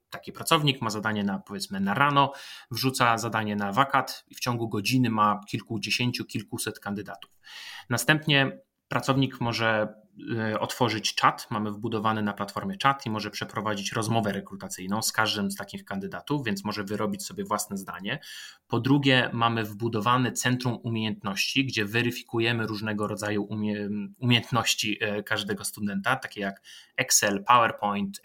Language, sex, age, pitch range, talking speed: Polish, male, 30-49, 105-125 Hz, 135 wpm